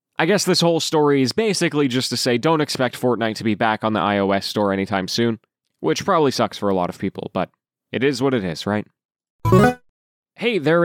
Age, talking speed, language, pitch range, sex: 20-39, 215 wpm, English, 120-165 Hz, male